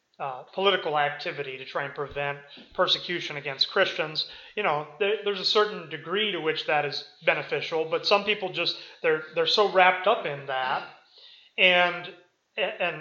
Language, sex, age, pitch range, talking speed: English, male, 30-49, 160-220 Hz, 160 wpm